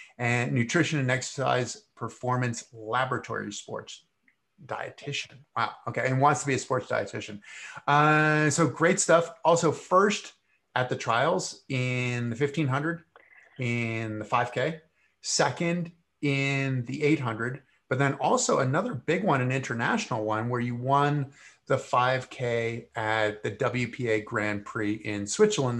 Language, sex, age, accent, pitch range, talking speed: English, male, 30-49, American, 120-160 Hz, 135 wpm